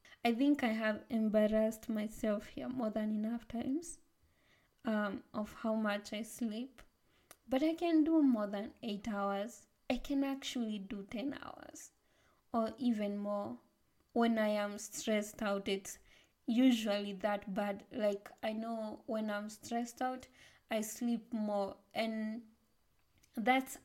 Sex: female